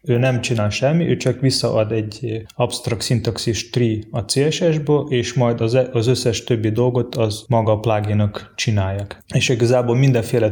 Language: Hungarian